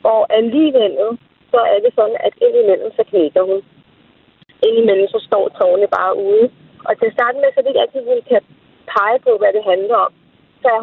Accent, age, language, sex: native, 30-49, Danish, female